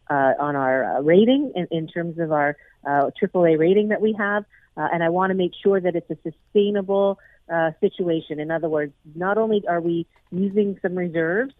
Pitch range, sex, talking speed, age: 160-195 Hz, female, 200 wpm, 40-59